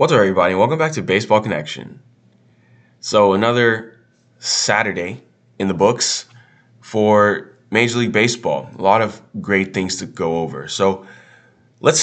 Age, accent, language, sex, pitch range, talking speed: 20-39, American, English, male, 90-115 Hz, 140 wpm